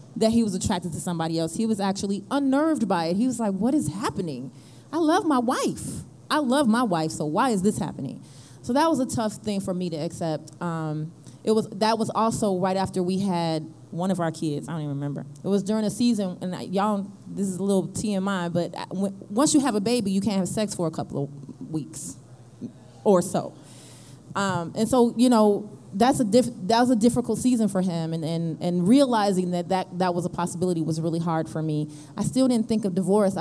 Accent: American